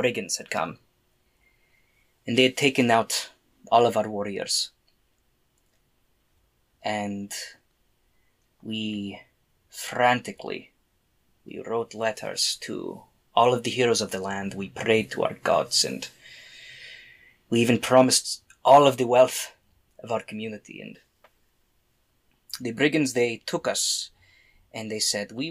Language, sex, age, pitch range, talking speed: English, male, 20-39, 100-125 Hz, 120 wpm